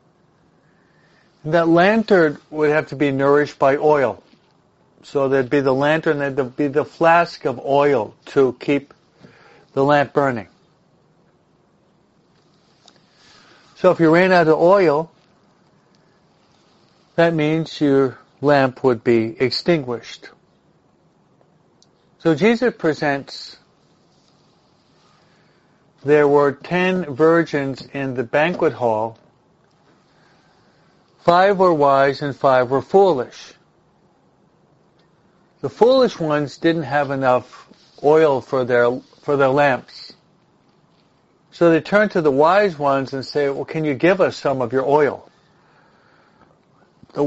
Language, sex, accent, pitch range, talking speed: English, male, American, 135-170 Hz, 110 wpm